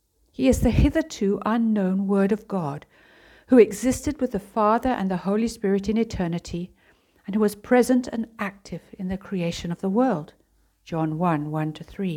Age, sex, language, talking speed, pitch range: 60-79, female, English, 170 wpm, 155-220 Hz